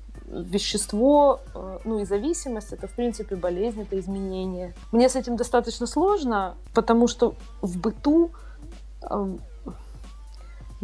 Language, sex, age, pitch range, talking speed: Ukrainian, female, 20-39, 175-220 Hz, 115 wpm